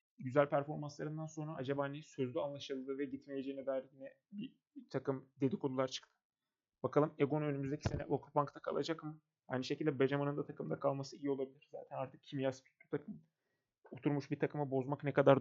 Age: 30-49